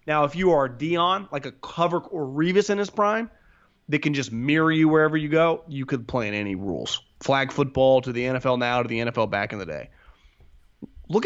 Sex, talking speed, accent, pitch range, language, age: male, 220 wpm, American, 120-160 Hz, English, 30-49